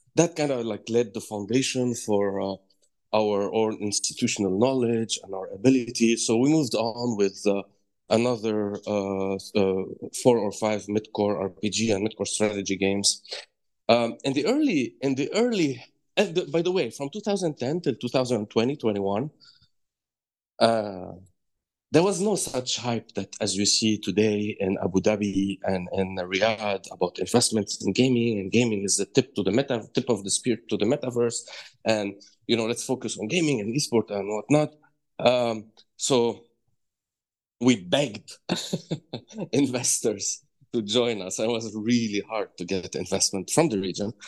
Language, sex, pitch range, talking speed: English, male, 100-125 Hz, 160 wpm